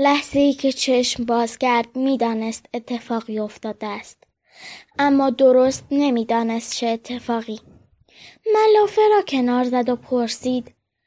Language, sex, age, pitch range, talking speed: Persian, female, 10-29, 240-360 Hz, 115 wpm